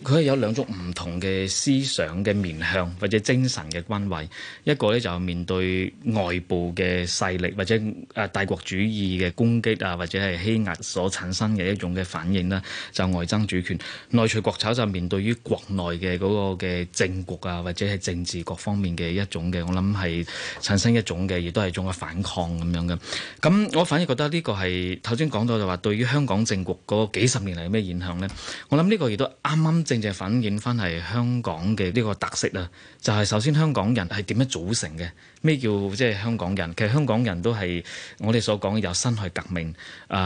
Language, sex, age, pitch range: Chinese, male, 20-39, 90-115 Hz